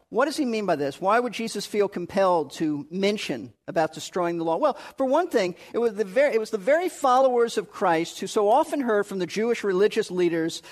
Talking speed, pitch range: 230 wpm, 190-235 Hz